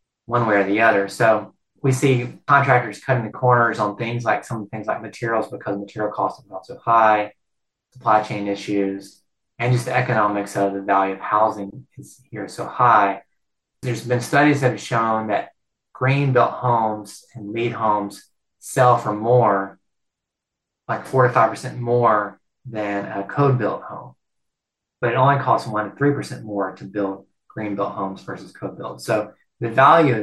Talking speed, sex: 175 wpm, male